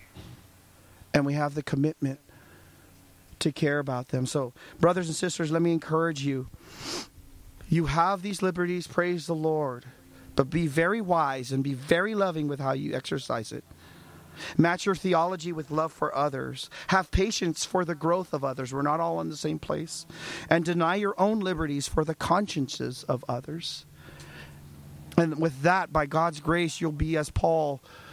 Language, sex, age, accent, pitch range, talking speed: English, male, 40-59, American, 135-175 Hz, 165 wpm